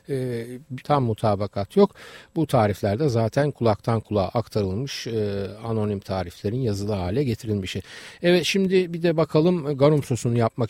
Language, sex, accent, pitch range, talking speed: Turkish, male, native, 105-140 Hz, 135 wpm